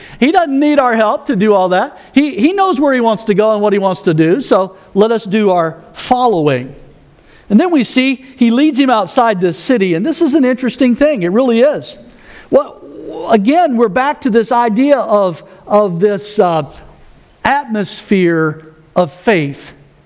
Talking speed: 185 wpm